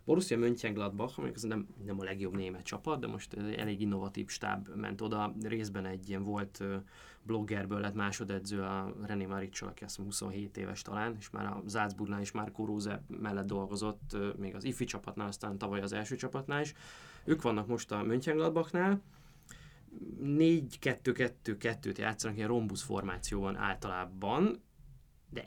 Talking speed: 150 wpm